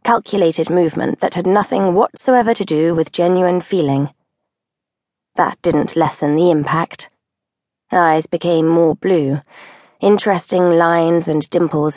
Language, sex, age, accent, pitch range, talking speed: English, female, 20-39, British, 160-190 Hz, 120 wpm